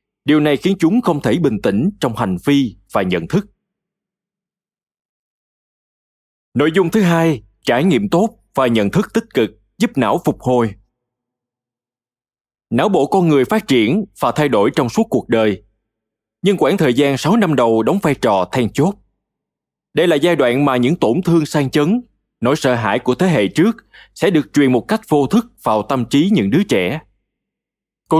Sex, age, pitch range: male, 20-39, 115-180 Hz